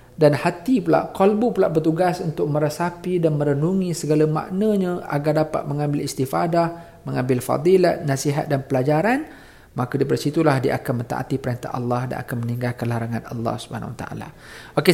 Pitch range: 125-160 Hz